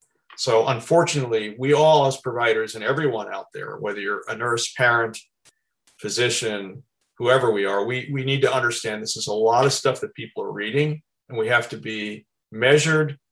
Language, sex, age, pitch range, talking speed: English, male, 50-69, 125-165 Hz, 180 wpm